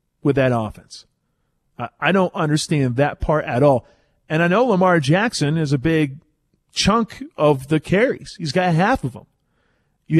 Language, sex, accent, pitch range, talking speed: English, male, American, 140-185 Hz, 165 wpm